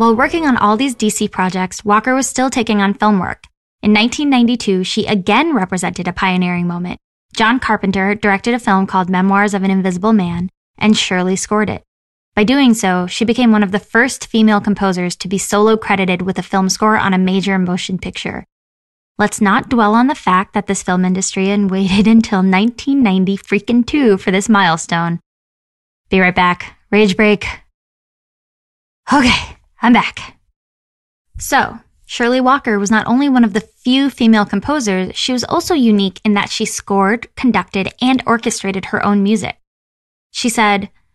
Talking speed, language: 165 wpm, English